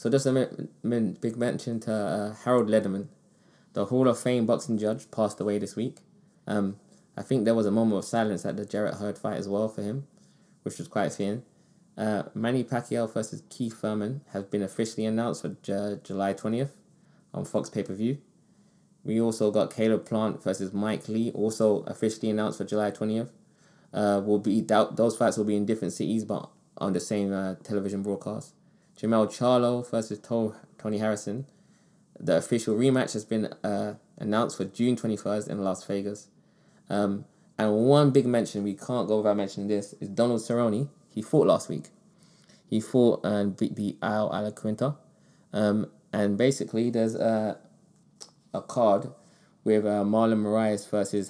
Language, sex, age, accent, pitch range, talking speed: English, male, 20-39, British, 105-120 Hz, 175 wpm